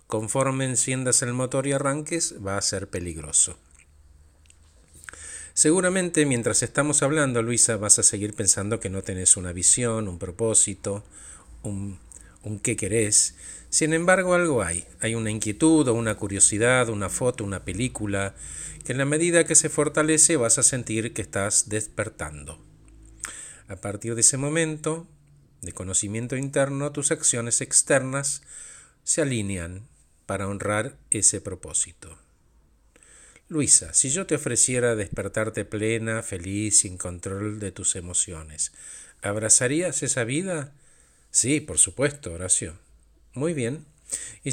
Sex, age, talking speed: male, 50-69, 130 wpm